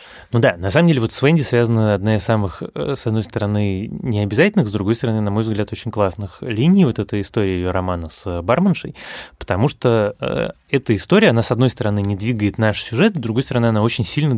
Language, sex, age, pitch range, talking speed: Russian, male, 20-39, 95-125 Hz, 210 wpm